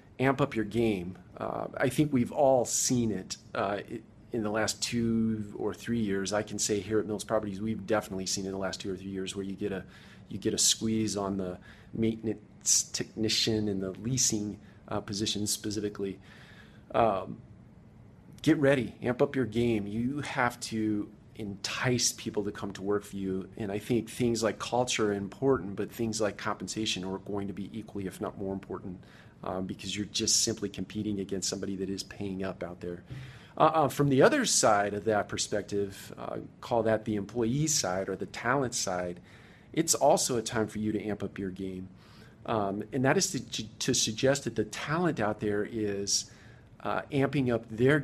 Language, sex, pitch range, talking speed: English, male, 100-120 Hz, 195 wpm